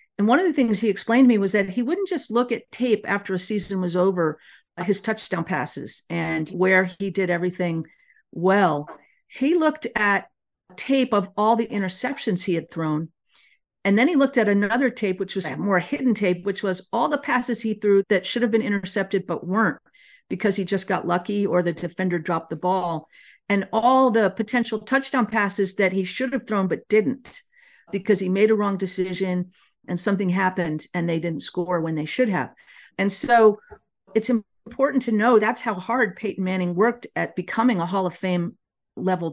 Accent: American